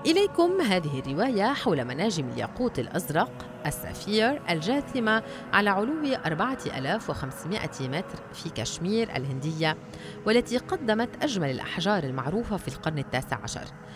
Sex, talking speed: female, 110 wpm